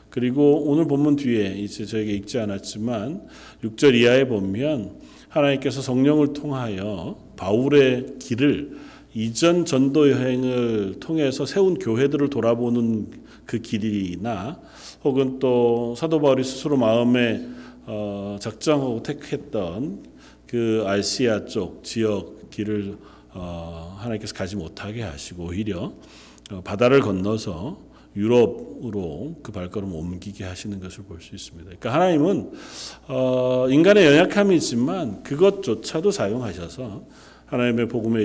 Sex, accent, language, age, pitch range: male, native, Korean, 40-59, 100-135 Hz